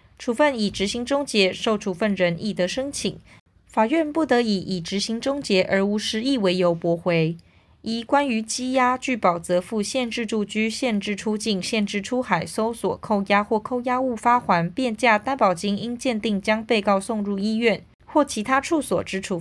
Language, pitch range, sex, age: Chinese, 190-240 Hz, female, 20-39